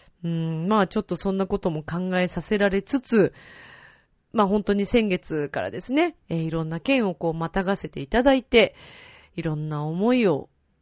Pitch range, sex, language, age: 160-220 Hz, female, Japanese, 30-49